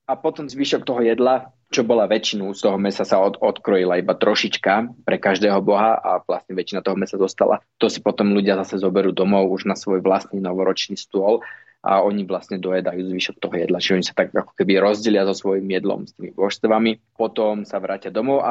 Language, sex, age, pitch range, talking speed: Slovak, male, 20-39, 95-110 Hz, 205 wpm